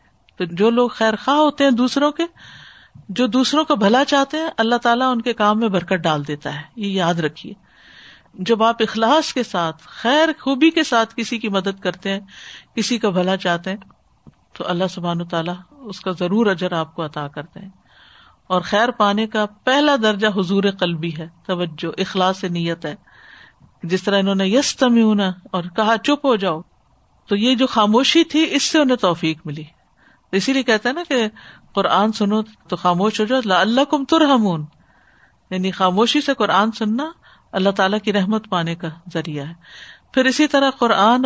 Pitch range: 175-235 Hz